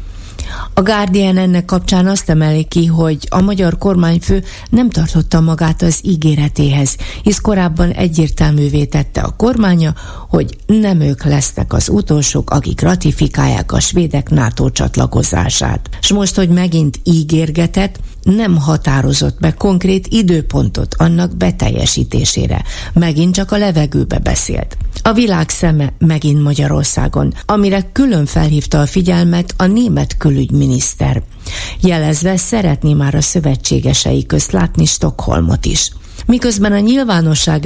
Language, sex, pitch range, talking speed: Hungarian, female, 145-185 Hz, 120 wpm